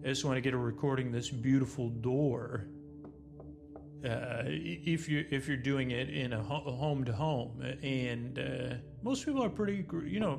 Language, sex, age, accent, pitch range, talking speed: English, male, 40-59, American, 125-155 Hz, 180 wpm